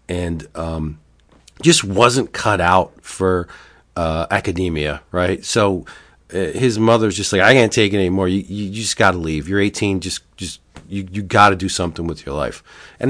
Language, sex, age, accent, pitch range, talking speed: English, male, 40-59, American, 90-110 Hz, 190 wpm